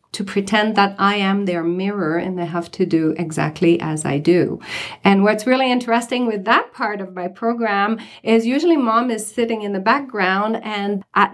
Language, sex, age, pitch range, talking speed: English, female, 40-59, 175-225 Hz, 190 wpm